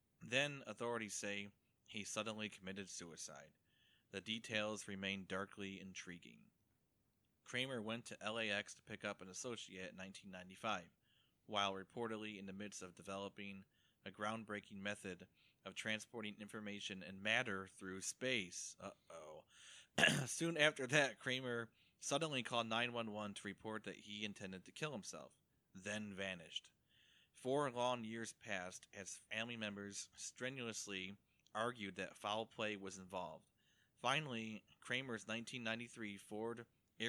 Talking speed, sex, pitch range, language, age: 125 wpm, male, 95-115 Hz, English, 30-49